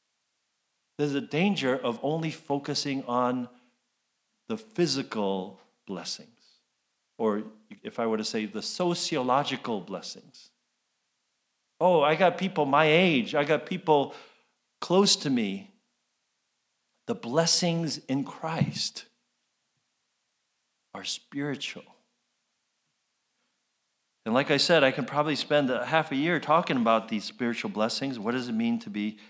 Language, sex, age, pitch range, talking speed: English, male, 50-69, 120-180 Hz, 125 wpm